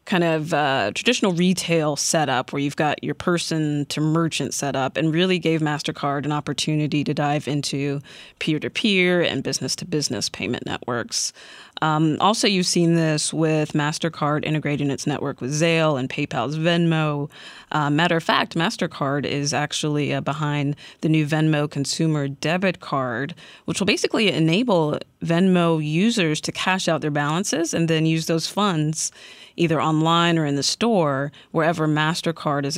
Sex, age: female, 30-49